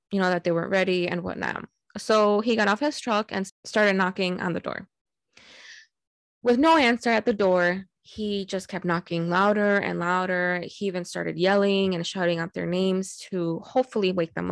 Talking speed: 190 wpm